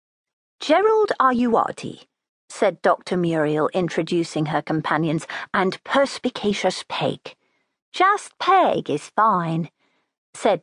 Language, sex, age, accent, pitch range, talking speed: English, female, 50-69, British, 165-235 Hz, 90 wpm